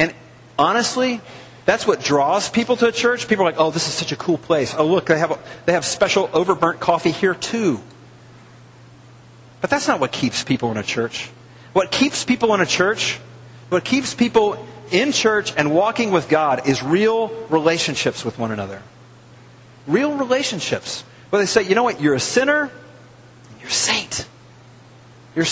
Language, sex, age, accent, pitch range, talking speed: English, male, 40-59, American, 120-195 Hz, 180 wpm